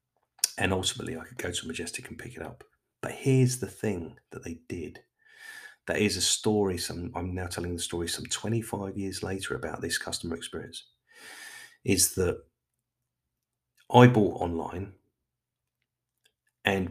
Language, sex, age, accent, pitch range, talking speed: English, male, 40-59, British, 85-125 Hz, 150 wpm